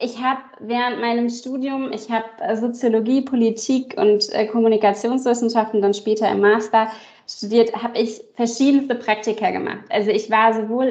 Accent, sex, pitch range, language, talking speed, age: German, female, 215-240 Hz, German, 140 wpm, 20-39